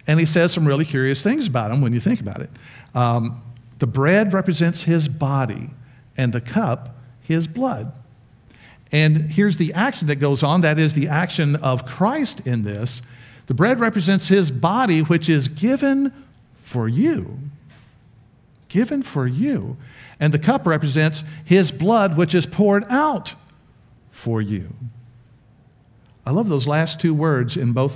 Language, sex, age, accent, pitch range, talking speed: English, male, 50-69, American, 120-170 Hz, 155 wpm